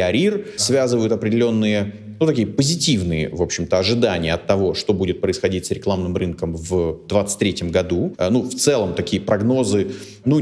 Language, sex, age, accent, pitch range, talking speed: Russian, male, 30-49, native, 95-125 Hz, 150 wpm